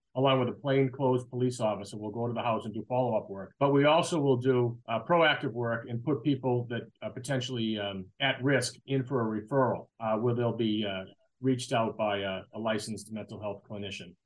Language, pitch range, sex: English, 115-135 Hz, male